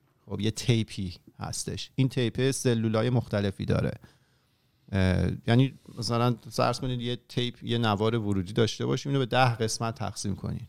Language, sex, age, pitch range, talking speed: Persian, male, 40-59, 110-140 Hz, 145 wpm